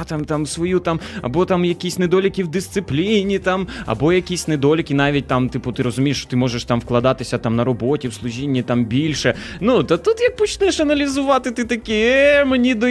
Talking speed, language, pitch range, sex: 195 wpm, Ukrainian, 125-175 Hz, male